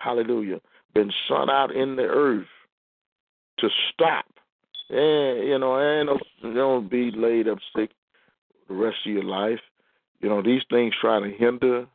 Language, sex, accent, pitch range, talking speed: English, male, American, 105-125 Hz, 150 wpm